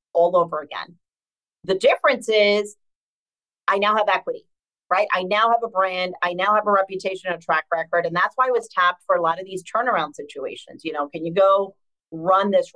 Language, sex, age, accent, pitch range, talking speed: English, female, 40-59, American, 180-230 Hz, 210 wpm